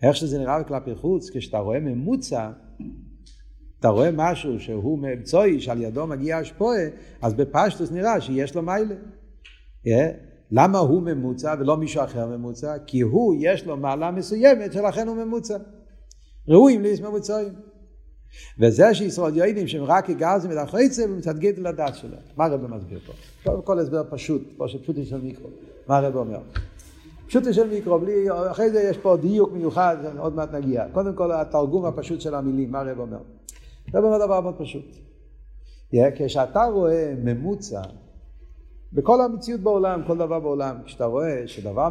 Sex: male